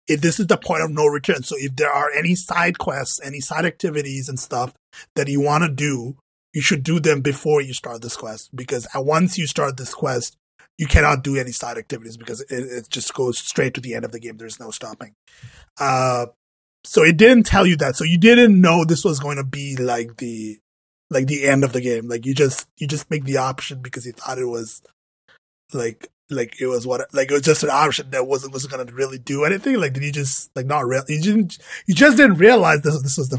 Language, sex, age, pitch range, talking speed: English, male, 20-39, 125-165 Hz, 235 wpm